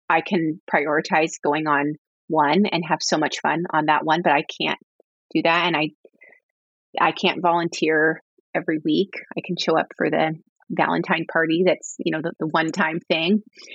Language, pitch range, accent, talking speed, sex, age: English, 155-190 Hz, American, 180 wpm, female, 30-49